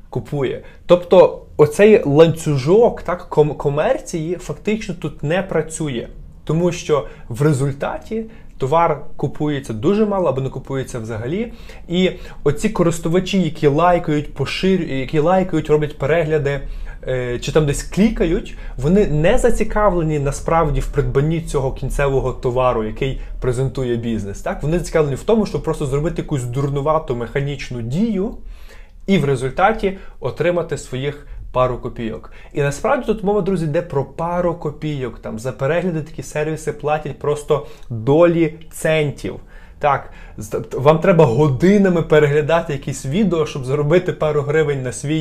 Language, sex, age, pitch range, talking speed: Ukrainian, male, 20-39, 135-170 Hz, 130 wpm